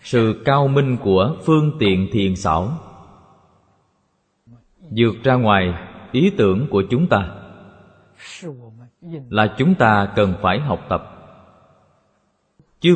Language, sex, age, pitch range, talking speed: Vietnamese, male, 20-39, 95-140 Hz, 110 wpm